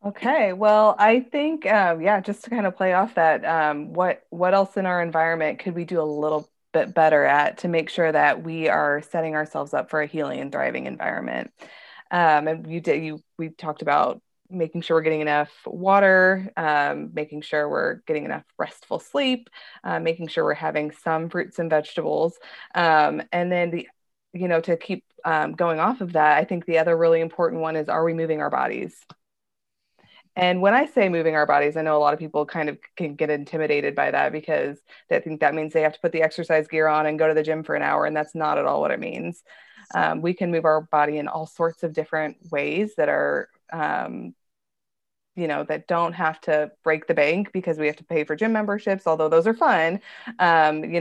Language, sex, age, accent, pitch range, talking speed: English, female, 20-39, American, 155-180 Hz, 220 wpm